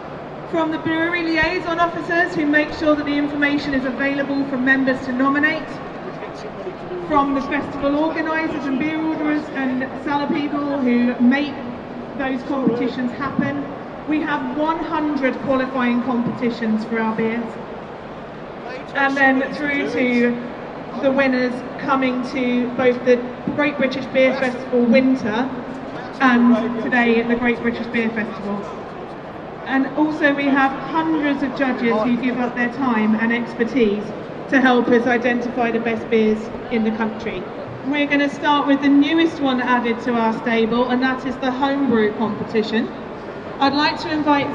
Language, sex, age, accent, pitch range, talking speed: English, female, 30-49, British, 245-290 Hz, 145 wpm